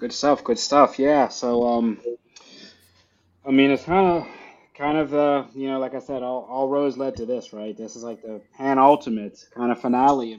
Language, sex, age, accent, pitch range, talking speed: English, male, 20-39, American, 110-130 Hz, 215 wpm